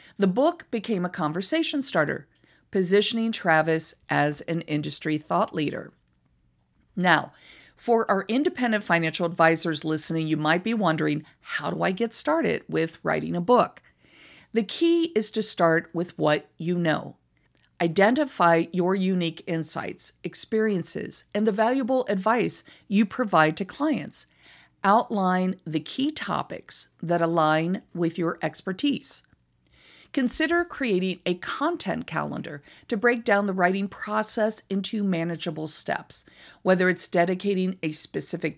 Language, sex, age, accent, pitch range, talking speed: English, female, 50-69, American, 165-225 Hz, 130 wpm